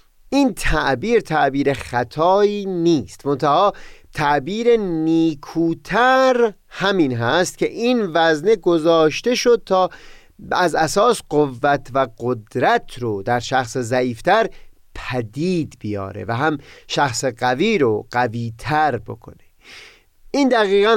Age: 40-59